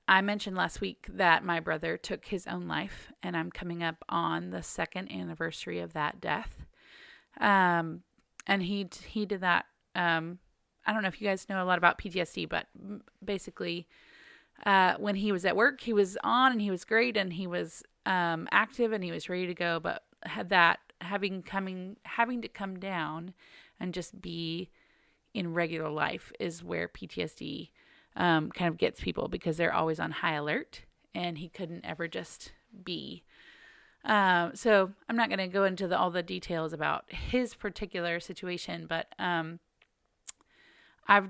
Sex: female